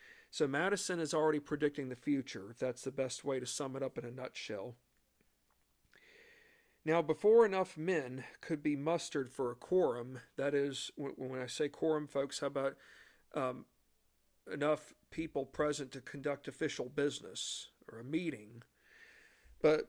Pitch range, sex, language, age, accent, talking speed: 140-170 Hz, male, English, 50-69, American, 150 wpm